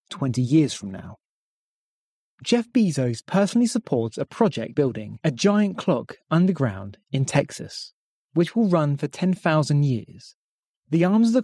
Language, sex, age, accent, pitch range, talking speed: English, male, 30-49, British, 125-185 Hz, 140 wpm